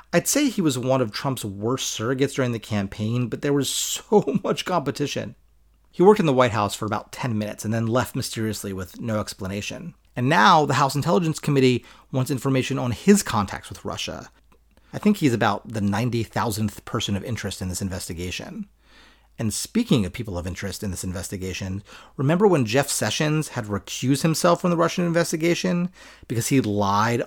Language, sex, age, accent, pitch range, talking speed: English, male, 30-49, American, 105-145 Hz, 185 wpm